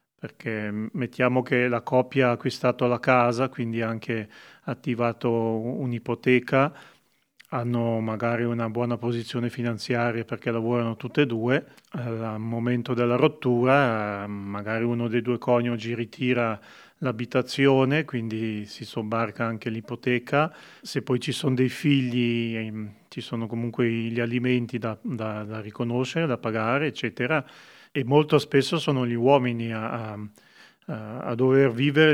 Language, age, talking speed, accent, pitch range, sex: Italian, 30-49, 130 wpm, native, 115-130 Hz, male